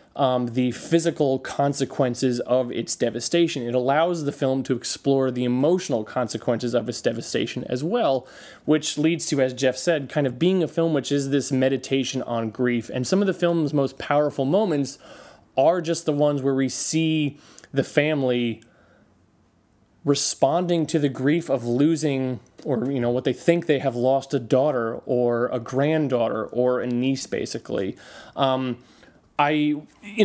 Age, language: 20-39, English